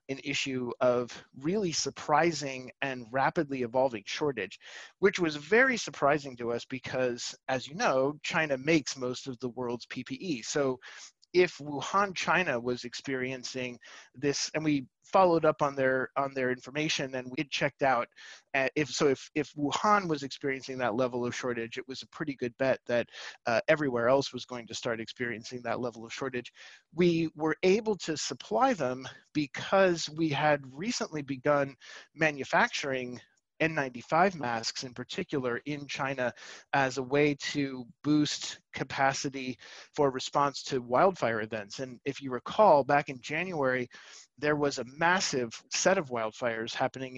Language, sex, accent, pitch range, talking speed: English, male, American, 125-150 Hz, 155 wpm